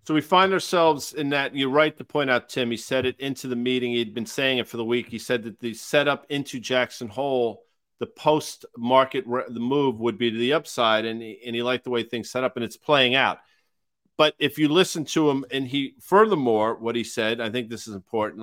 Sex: male